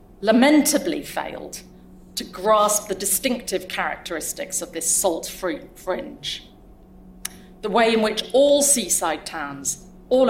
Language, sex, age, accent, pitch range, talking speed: English, female, 40-59, British, 180-215 Hz, 110 wpm